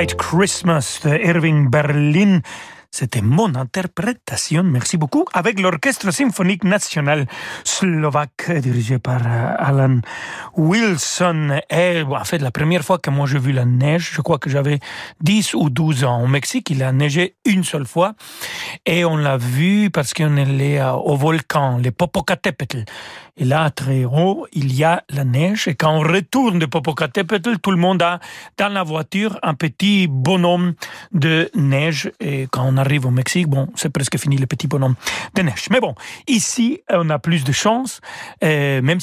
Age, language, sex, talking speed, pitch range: 40-59, French, male, 170 wpm, 140-185 Hz